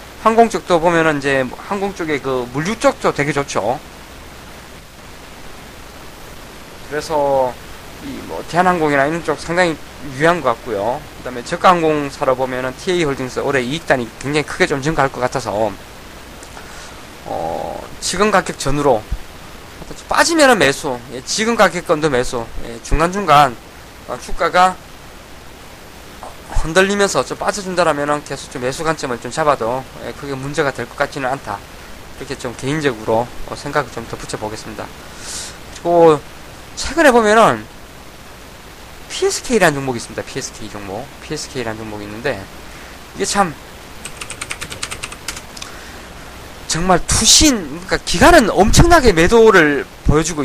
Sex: male